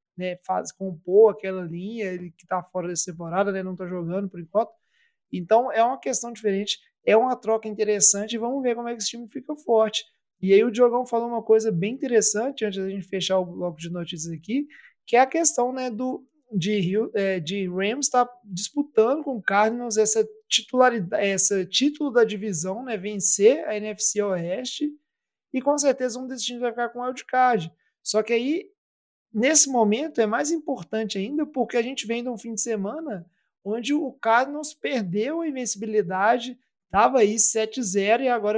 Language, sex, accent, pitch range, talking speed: Portuguese, male, Brazilian, 200-255 Hz, 190 wpm